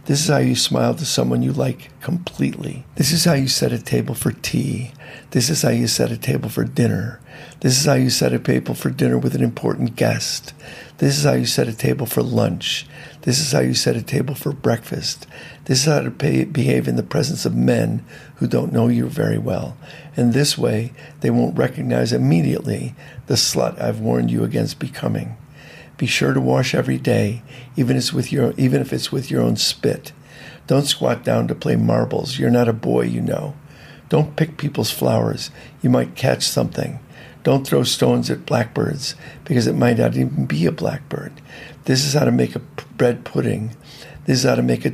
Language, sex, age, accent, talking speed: English, male, 50-69, American, 200 wpm